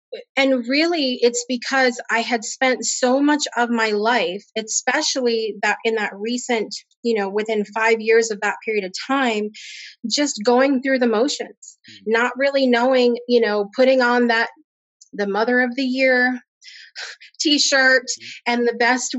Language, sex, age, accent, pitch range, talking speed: English, female, 30-49, American, 225-260 Hz, 155 wpm